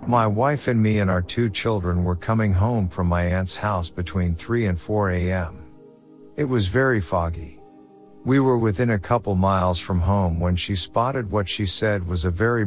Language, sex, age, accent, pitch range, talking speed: English, male, 50-69, American, 90-110 Hz, 195 wpm